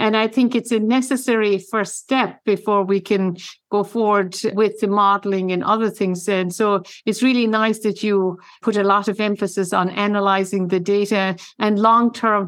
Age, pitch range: 60-79, 185-215 Hz